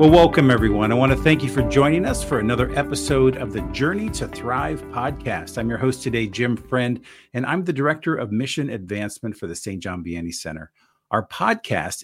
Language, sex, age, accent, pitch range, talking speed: English, male, 50-69, American, 105-140 Hz, 205 wpm